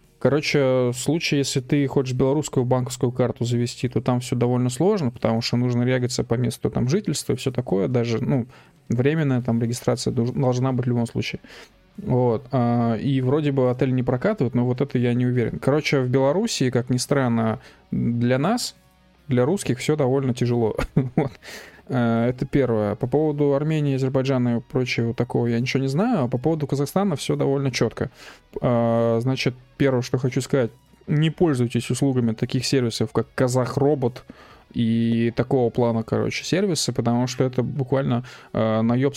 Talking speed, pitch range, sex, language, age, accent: 160 wpm, 120-140 Hz, male, Russian, 20-39, native